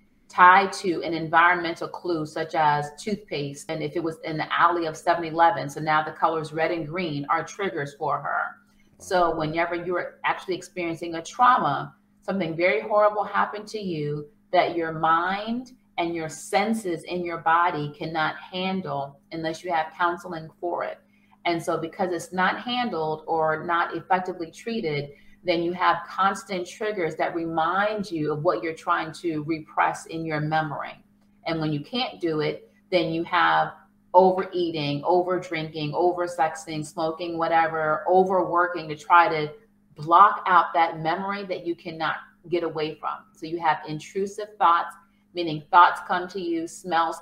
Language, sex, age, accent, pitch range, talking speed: English, female, 30-49, American, 160-185 Hz, 160 wpm